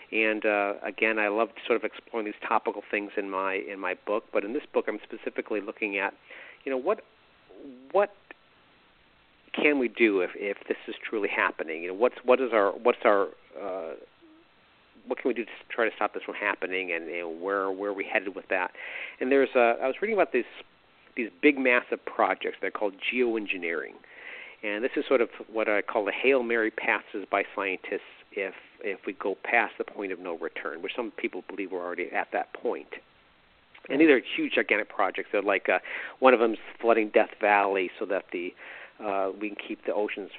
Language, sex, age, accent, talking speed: English, male, 50-69, American, 205 wpm